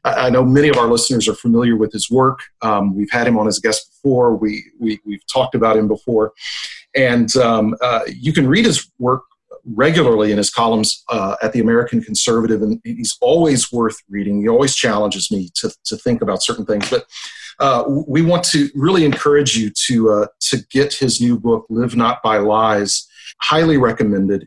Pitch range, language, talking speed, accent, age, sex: 110-145 Hz, English, 200 wpm, American, 40-59, male